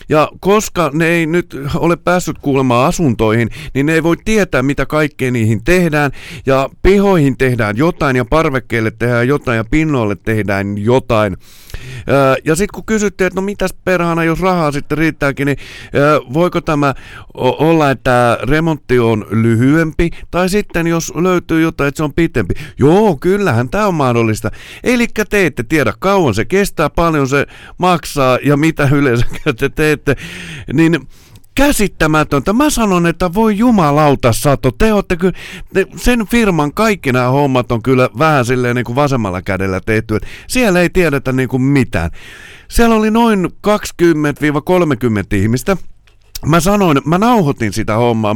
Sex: male